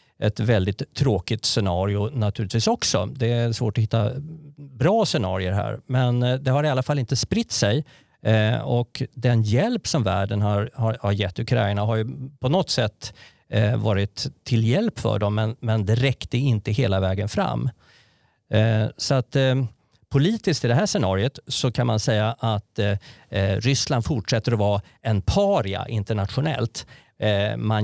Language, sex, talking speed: Swedish, male, 145 wpm